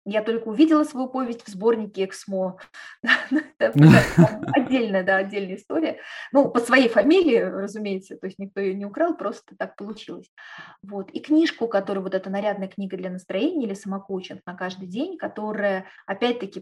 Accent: native